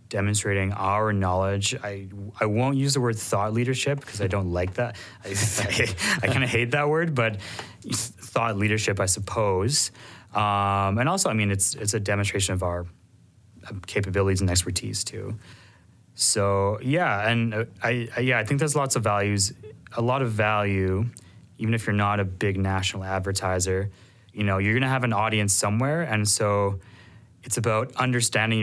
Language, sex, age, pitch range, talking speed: English, male, 20-39, 95-115 Hz, 170 wpm